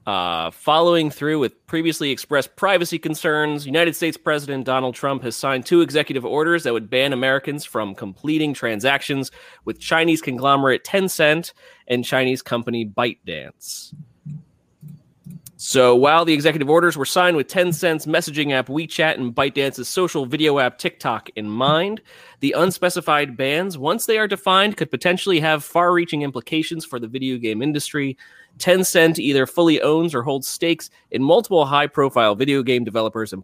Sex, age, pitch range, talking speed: male, 30-49, 130-165 Hz, 150 wpm